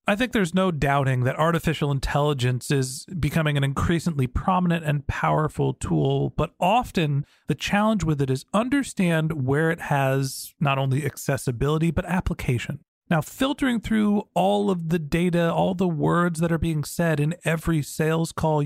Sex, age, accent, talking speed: male, 40-59, American, 160 wpm